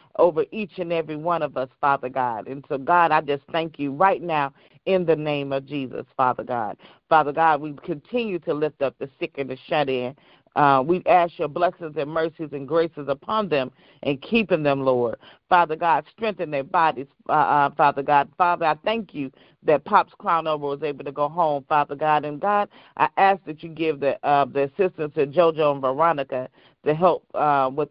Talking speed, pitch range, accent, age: 205 wpm, 140-170 Hz, American, 40-59